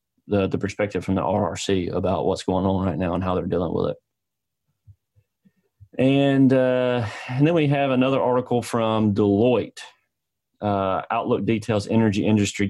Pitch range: 100-115 Hz